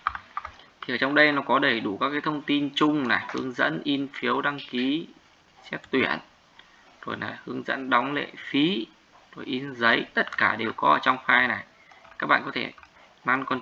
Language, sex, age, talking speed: Vietnamese, male, 20-39, 205 wpm